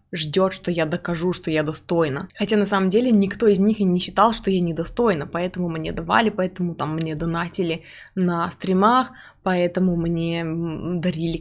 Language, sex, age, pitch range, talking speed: Russian, female, 20-39, 170-200 Hz, 170 wpm